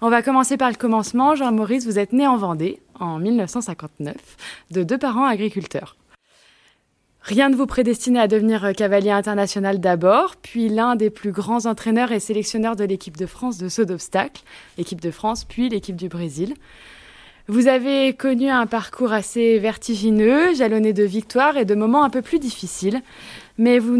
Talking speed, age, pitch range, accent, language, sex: 170 wpm, 20-39, 195-245 Hz, French, French, female